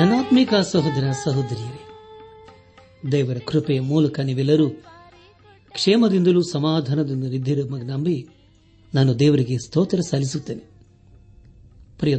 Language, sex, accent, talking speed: Kannada, male, native, 75 wpm